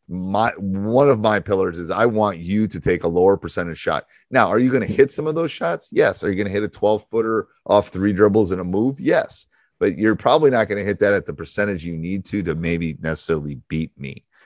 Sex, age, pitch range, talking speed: male, 30-49, 85-110 Hz, 245 wpm